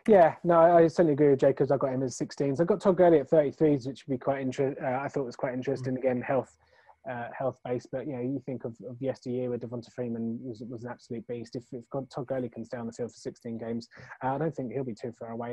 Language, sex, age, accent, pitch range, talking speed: English, male, 20-39, British, 115-130 Hz, 280 wpm